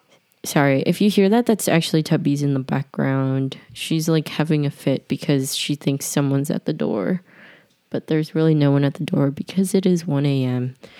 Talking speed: 195 wpm